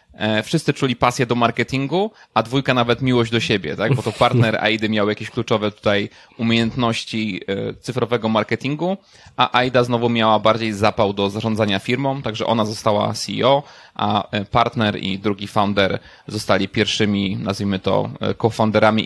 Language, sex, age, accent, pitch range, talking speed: Polish, male, 30-49, native, 105-125 Hz, 145 wpm